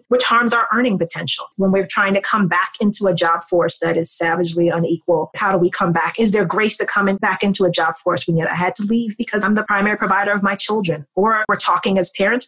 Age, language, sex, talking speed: 30-49, English, female, 255 wpm